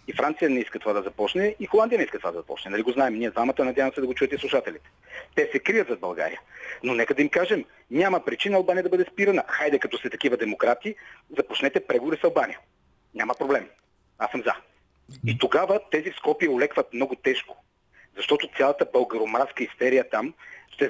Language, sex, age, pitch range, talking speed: Bulgarian, male, 40-59, 125-205 Hz, 200 wpm